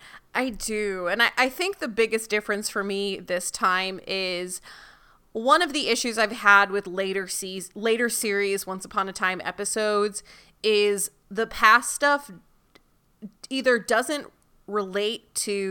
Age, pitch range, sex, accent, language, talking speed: 30-49, 190-245 Hz, female, American, English, 140 wpm